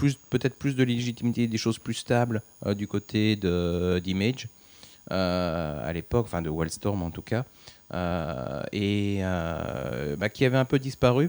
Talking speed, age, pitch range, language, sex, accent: 155 wpm, 30-49, 85-110 Hz, French, male, French